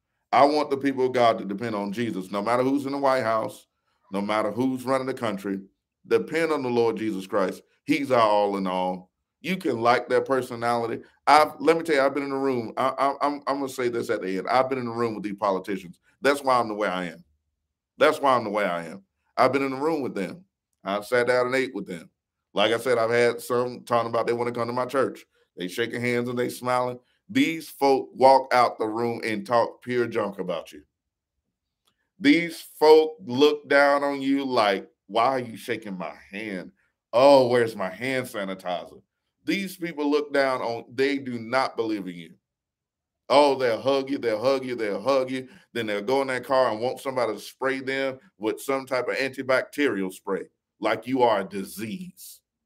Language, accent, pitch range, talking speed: English, American, 105-135 Hz, 220 wpm